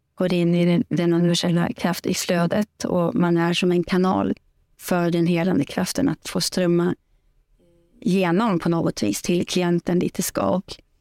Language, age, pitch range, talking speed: Swedish, 30-49, 175-195 Hz, 170 wpm